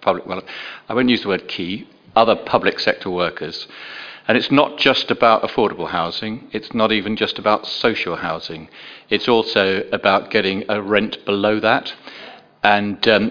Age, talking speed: 50-69, 160 wpm